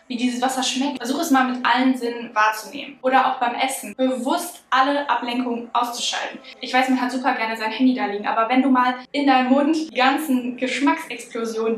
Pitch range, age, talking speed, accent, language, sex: 225-260 Hz, 10-29, 200 wpm, German, German, female